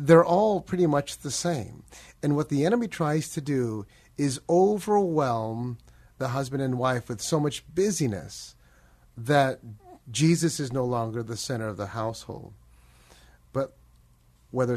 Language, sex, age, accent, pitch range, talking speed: English, male, 30-49, American, 85-145 Hz, 140 wpm